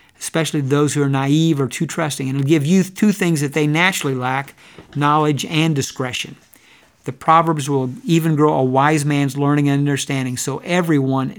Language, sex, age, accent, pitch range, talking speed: English, male, 50-69, American, 135-165 Hz, 185 wpm